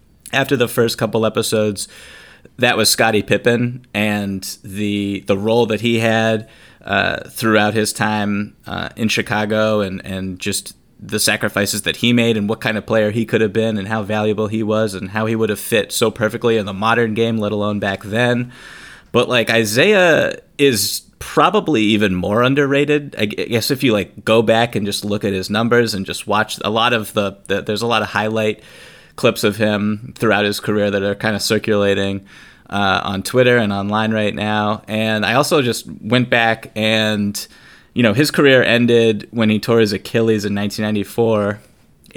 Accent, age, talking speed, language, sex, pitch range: American, 30-49, 185 wpm, English, male, 105-120 Hz